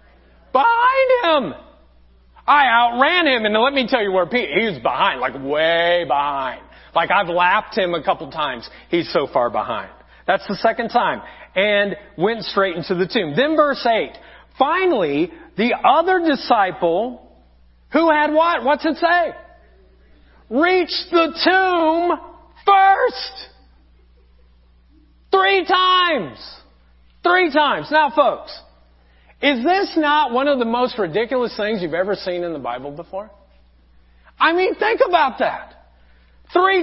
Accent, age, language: American, 40-59, English